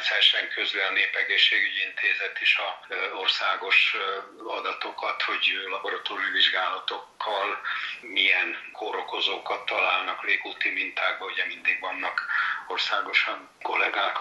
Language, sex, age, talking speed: Hungarian, male, 60-79, 95 wpm